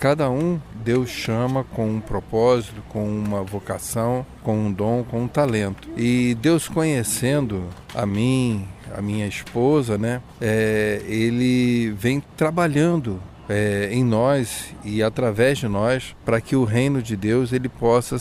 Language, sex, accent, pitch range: Portuguese, male, Brazilian, 110-145 Hz